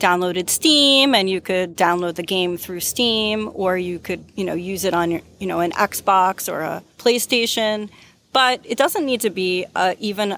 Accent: American